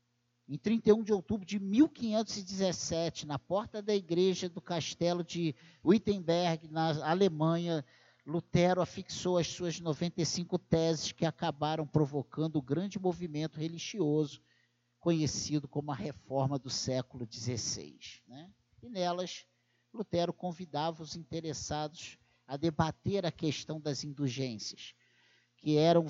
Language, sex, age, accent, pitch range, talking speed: Portuguese, male, 50-69, Brazilian, 145-185 Hz, 115 wpm